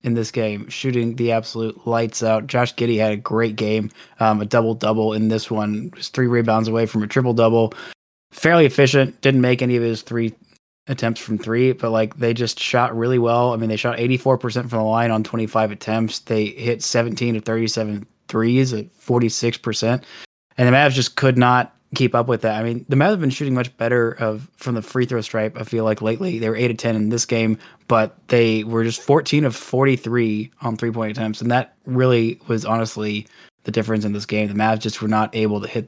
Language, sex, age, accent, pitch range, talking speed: English, male, 20-39, American, 110-120 Hz, 215 wpm